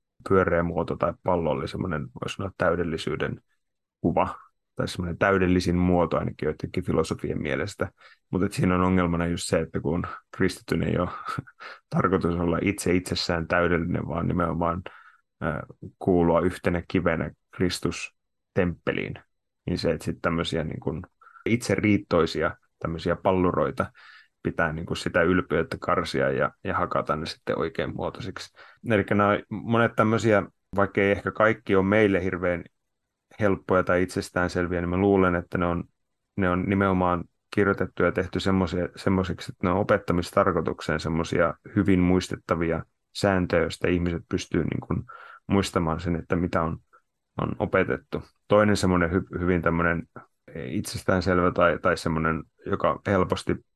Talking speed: 130 wpm